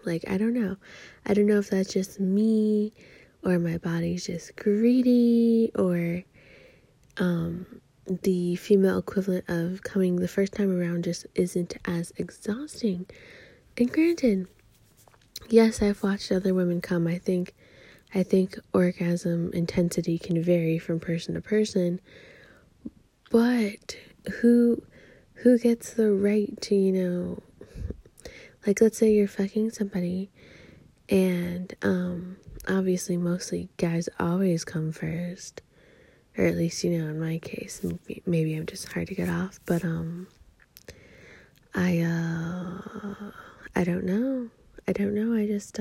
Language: English